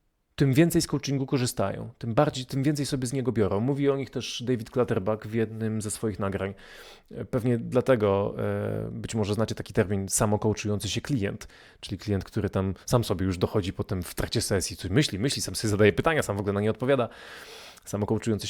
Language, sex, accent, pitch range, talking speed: Polish, male, native, 100-125 Hz, 190 wpm